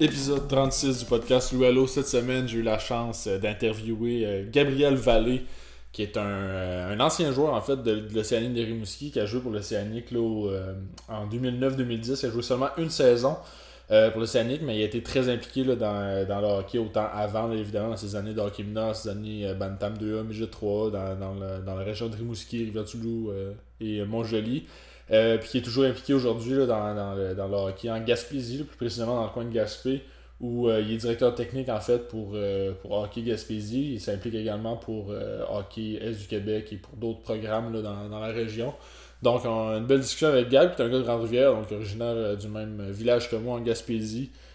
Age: 20-39